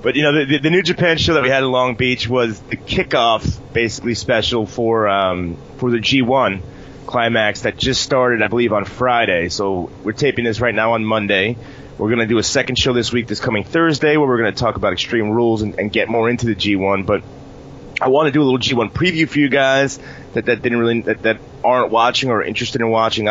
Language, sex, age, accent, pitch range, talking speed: English, male, 30-49, American, 110-135 Hz, 230 wpm